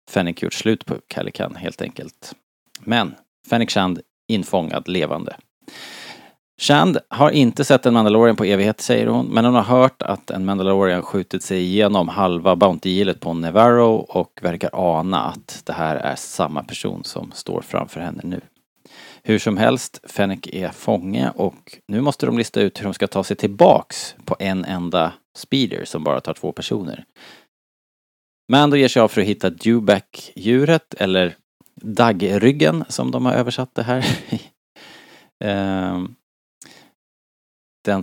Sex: male